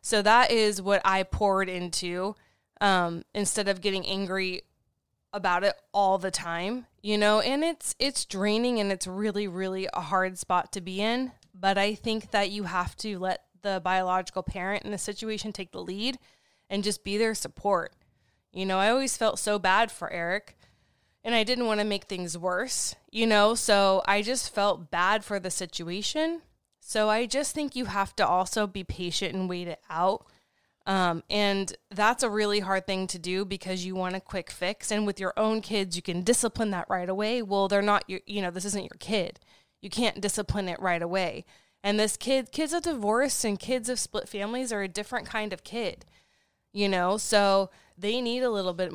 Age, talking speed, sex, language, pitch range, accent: 20-39, 200 wpm, female, English, 185-215 Hz, American